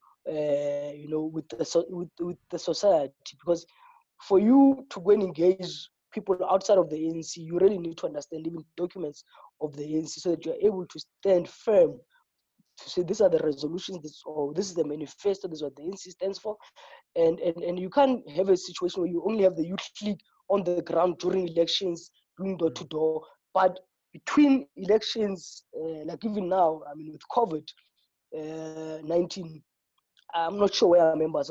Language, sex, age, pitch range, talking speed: English, female, 20-39, 160-200 Hz, 190 wpm